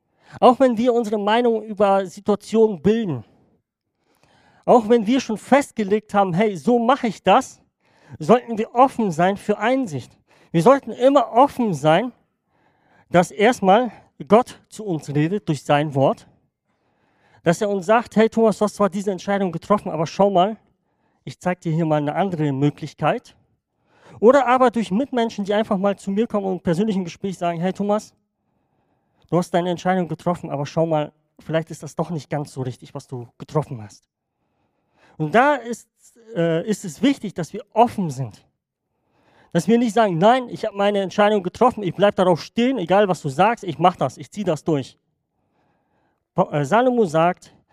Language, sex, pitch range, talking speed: German, male, 155-220 Hz, 170 wpm